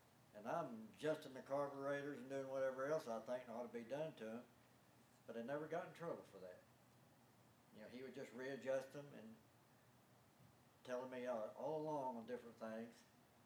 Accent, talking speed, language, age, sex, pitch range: American, 180 wpm, English, 60-79, male, 120-140 Hz